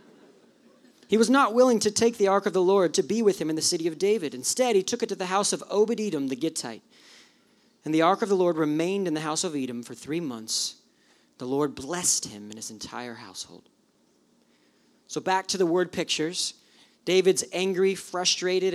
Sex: male